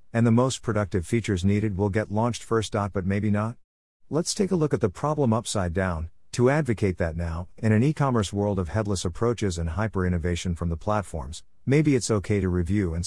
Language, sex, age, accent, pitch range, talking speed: English, male, 50-69, American, 90-115 Hz, 200 wpm